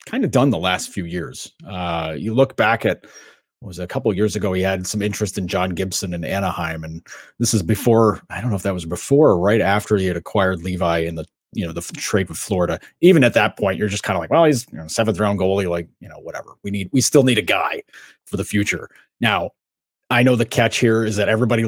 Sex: male